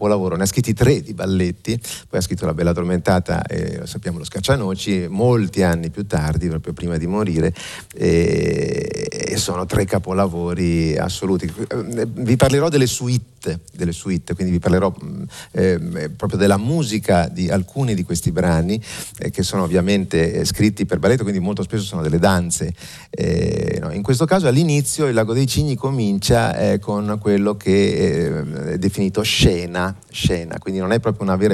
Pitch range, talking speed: 90-130 Hz, 170 wpm